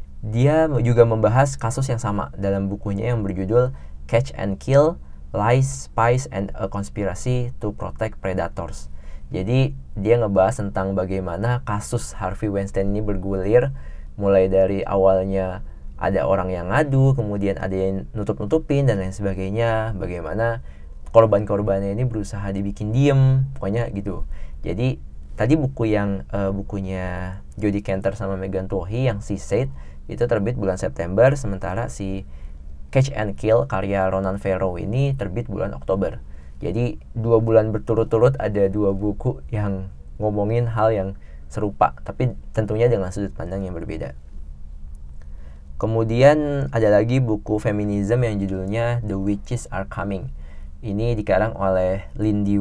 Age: 20-39